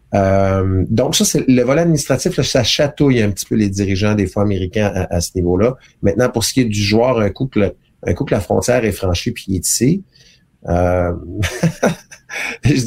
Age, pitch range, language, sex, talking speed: 30-49, 95-130 Hz, French, male, 205 wpm